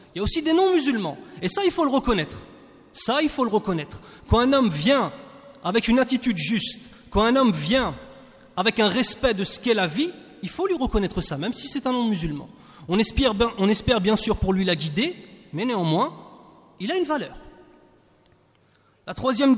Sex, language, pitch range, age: male, French, 155-245 Hz, 30-49